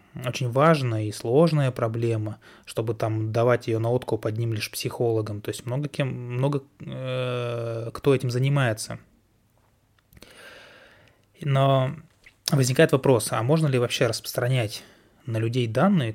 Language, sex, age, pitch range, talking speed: Russian, male, 20-39, 115-140 Hz, 125 wpm